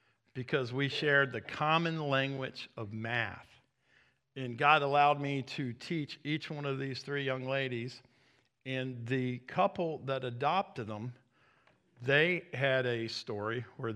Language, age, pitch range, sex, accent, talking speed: English, 50-69, 115-135 Hz, male, American, 140 wpm